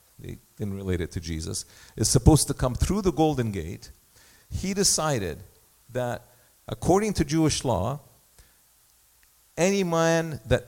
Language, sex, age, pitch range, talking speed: English, male, 50-69, 105-150 Hz, 135 wpm